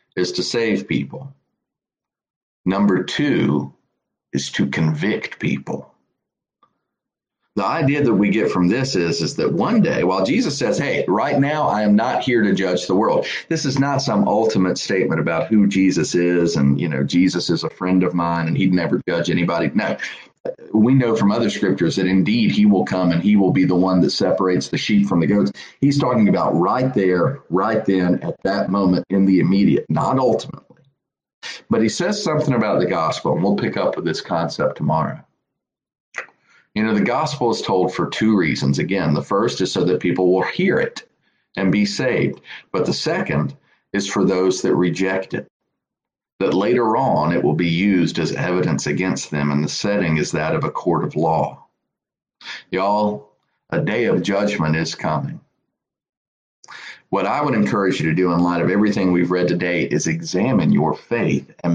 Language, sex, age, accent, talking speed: English, male, 40-59, American, 185 wpm